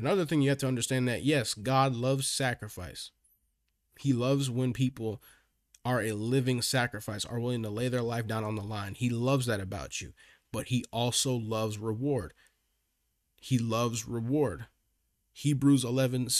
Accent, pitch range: American, 105-135 Hz